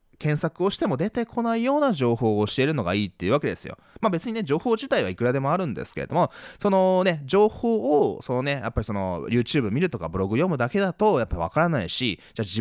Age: 20-39